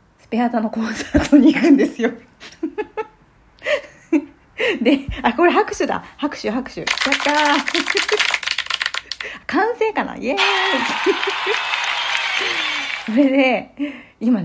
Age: 40-59